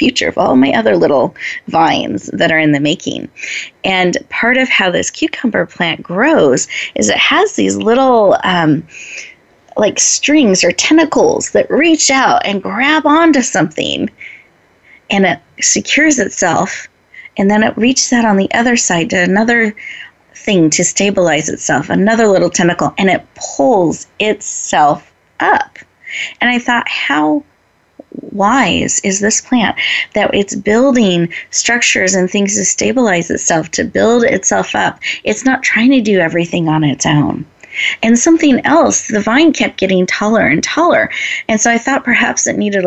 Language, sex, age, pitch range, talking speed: English, female, 30-49, 180-245 Hz, 155 wpm